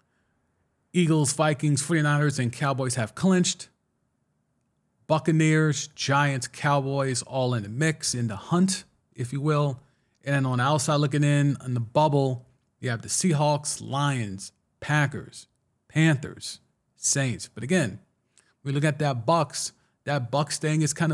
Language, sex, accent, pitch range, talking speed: English, male, American, 120-160 Hz, 140 wpm